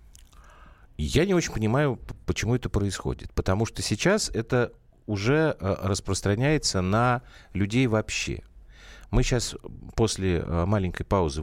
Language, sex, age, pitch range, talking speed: Russian, male, 50-69, 80-115 Hz, 110 wpm